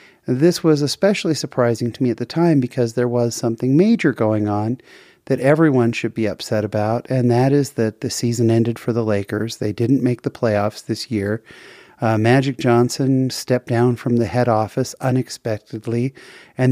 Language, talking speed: English, 180 wpm